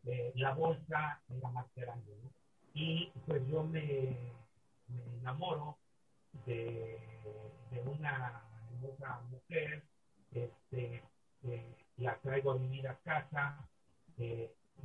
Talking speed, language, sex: 115 wpm, English, male